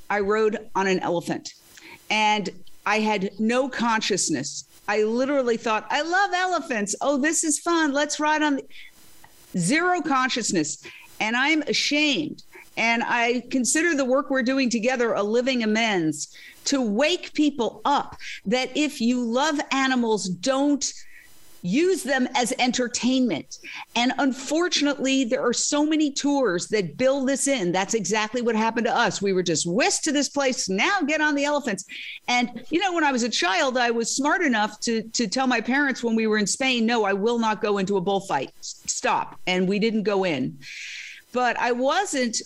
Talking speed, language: 170 wpm, English